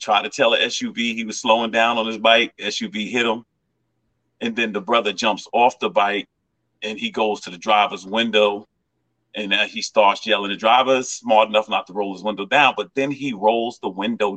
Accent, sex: American, male